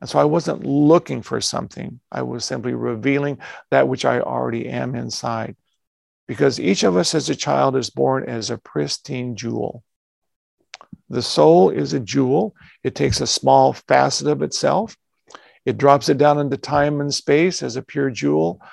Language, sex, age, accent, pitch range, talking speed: English, male, 50-69, American, 115-140 Hz, 175 wpm